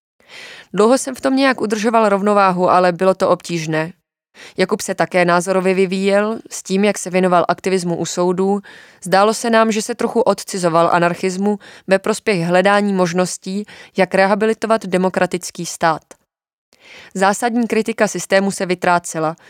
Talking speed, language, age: 140 wpm, Czech, 20-39